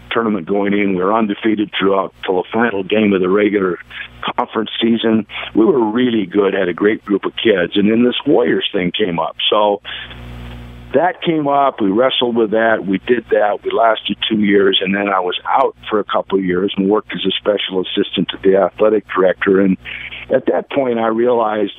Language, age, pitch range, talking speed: English, 50-69, 95-115 Hz, 200 wpm